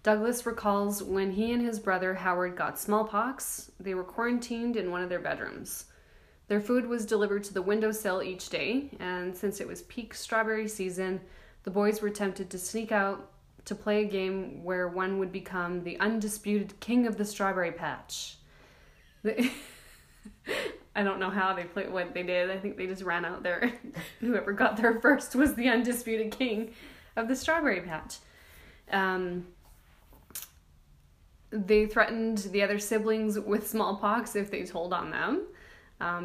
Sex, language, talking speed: female, English, 160 wpm